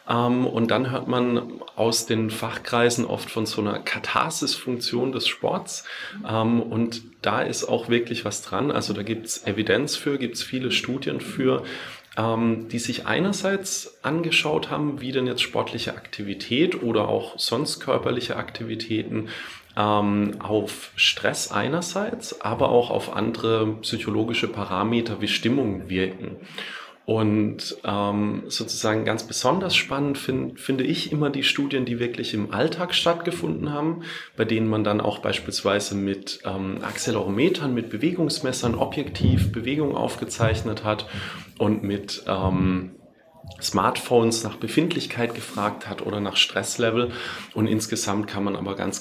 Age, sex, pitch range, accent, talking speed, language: 30-49, male, 100-120 Hz, German, 130 wpm, German